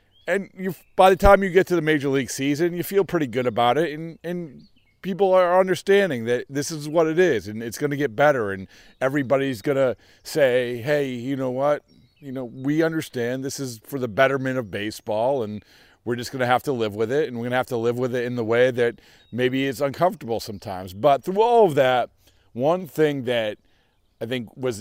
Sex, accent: male, American